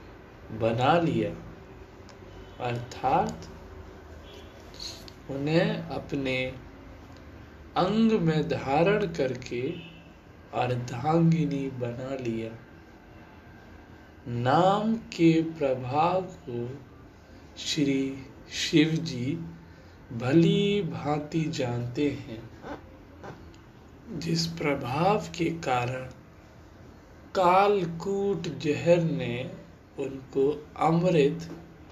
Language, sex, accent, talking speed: Hindi, male, native, 60 wpm